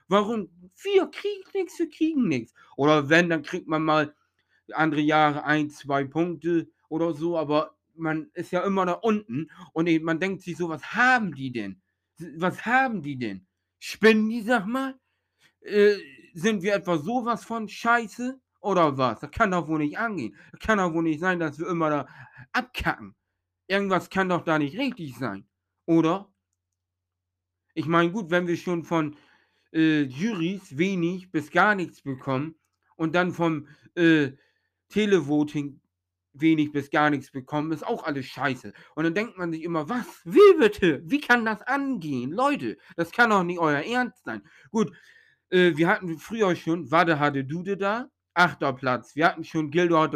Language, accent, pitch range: German, German, 150-195 Hz